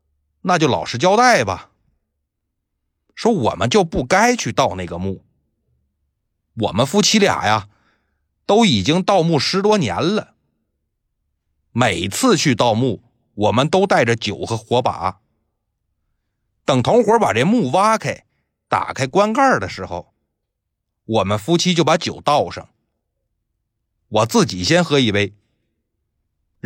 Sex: male